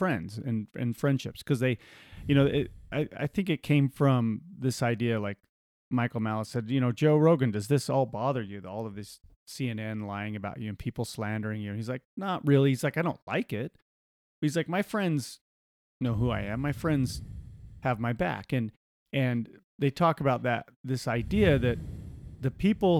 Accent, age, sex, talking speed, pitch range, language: American, 30-49, male, 200 wpm, 115-155 Hz, English